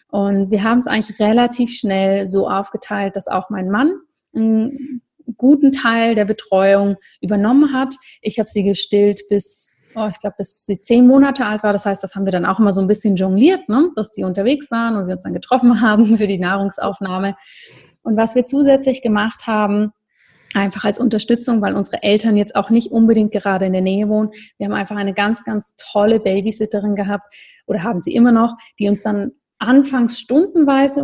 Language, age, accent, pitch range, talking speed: German, 30-49, German, 200-235 Hz, 195 wpm